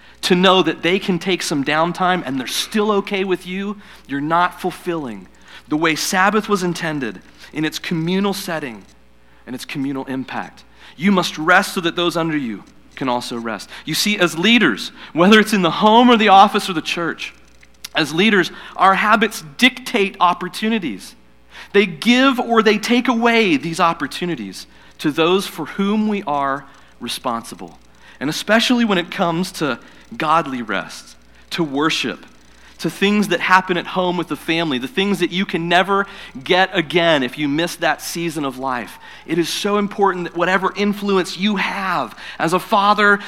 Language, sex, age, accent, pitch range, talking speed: English, male, 40-59, American, 150-200 Hz, 170 wpm